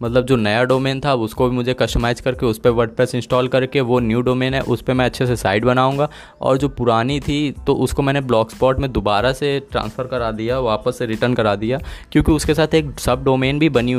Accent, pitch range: native, 115-140 Hz